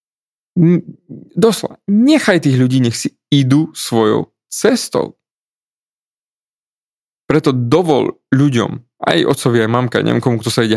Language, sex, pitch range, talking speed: Slovak, male, 120-160 Hz, 125 wpm